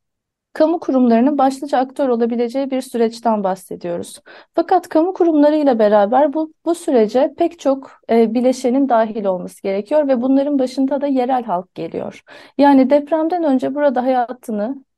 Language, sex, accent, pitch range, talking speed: Turkish, female, native, 235-295 Hz, 135 wpm